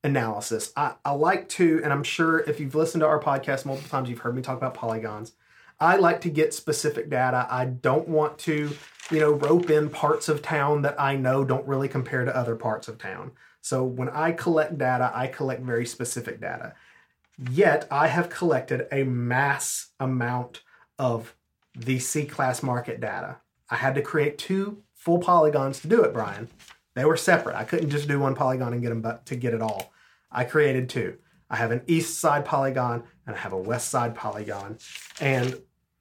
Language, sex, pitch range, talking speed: English, male, 125-160 Hz, 195 wpm